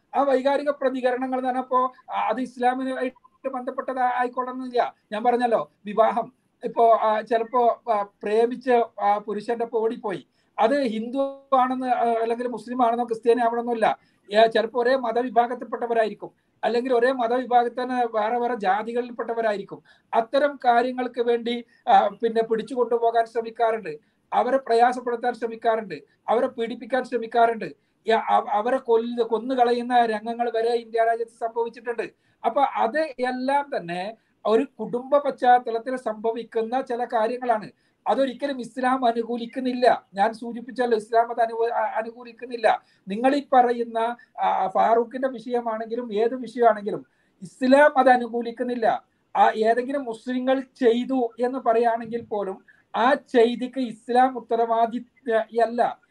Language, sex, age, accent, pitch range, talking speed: Malayalam, male, 50-69, native, 230-255 Hz, 100 wpm